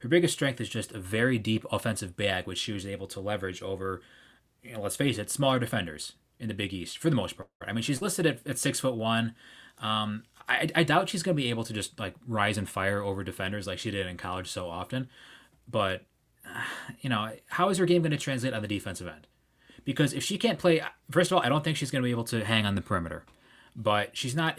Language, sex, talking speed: English, male, 250 wpm